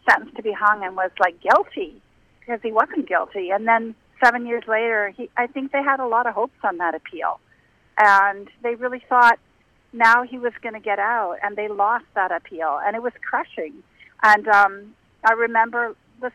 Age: 50-69